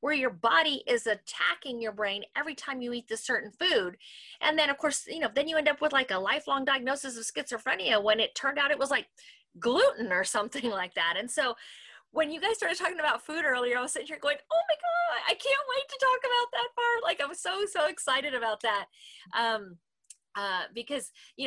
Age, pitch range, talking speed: 30-49, 210-280 Hz, 225 wpm